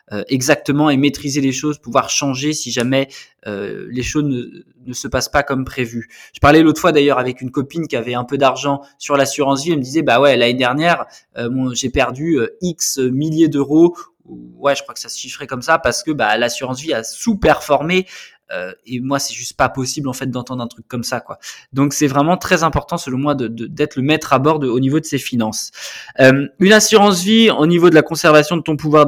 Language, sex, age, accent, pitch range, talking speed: French, male, 20-39, French, 130-155 Hz, 230 wpm